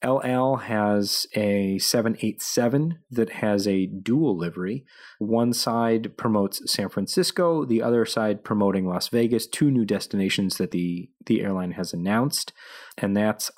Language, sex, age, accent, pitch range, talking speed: English, male, 30-49, American, 100-125 Hz, 135 wpm